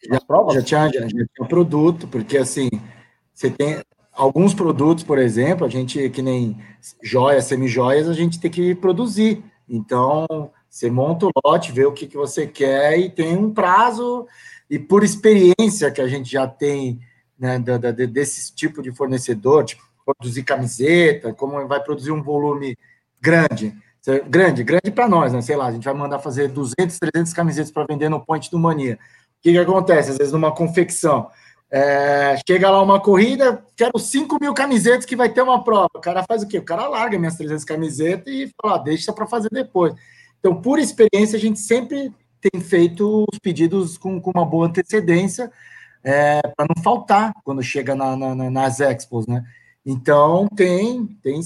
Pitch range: 135-190 Hz